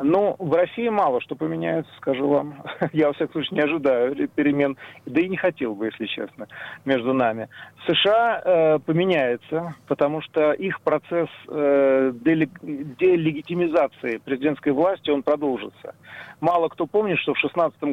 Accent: native